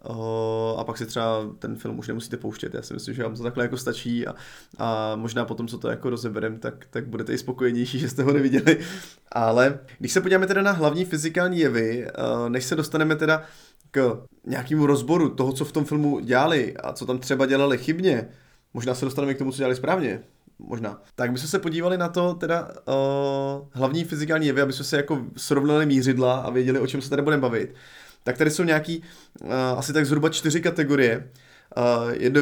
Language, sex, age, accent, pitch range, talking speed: Czech, male, 20-39, native, 120-150 Hz, 200 wpm